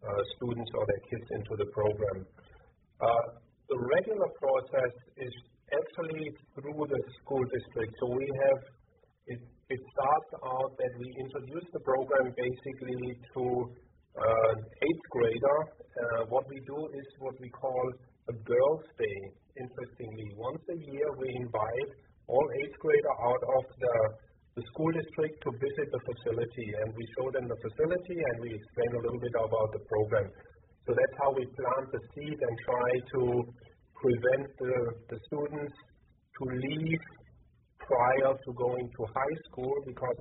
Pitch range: 120-150 Hz